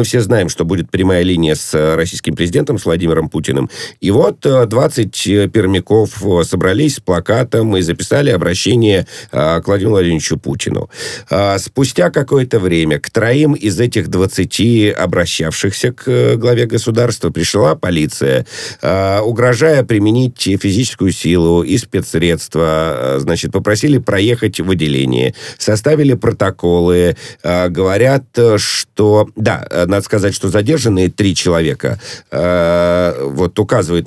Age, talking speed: 50-69, 120 wpm